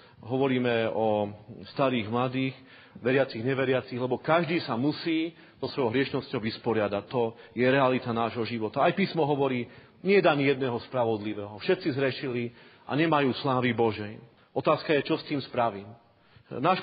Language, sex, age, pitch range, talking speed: Slovak, male, 40-59, 115-145 Hz, 145 wpm